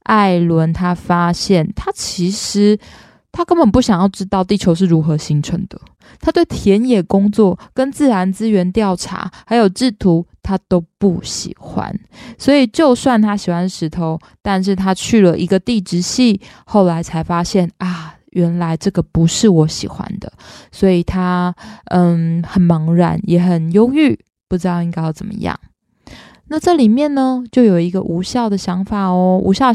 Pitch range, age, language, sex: 175-220 Hz, 20-39, Chinese, female